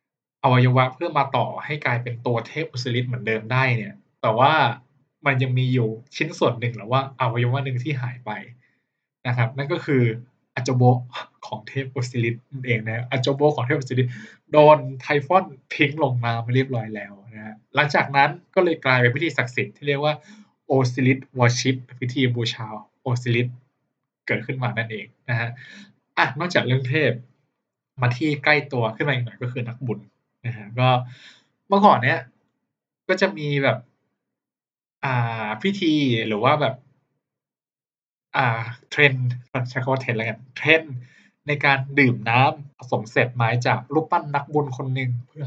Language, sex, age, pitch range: Thai, male, 20-39, 120-140 Hz